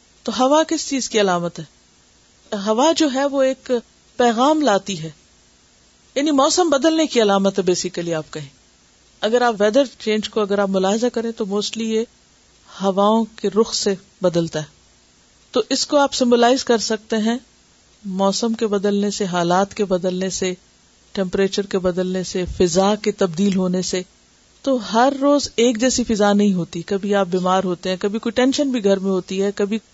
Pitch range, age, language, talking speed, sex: 185-255 Hz, 50-69, Urdu, 170 wpm, female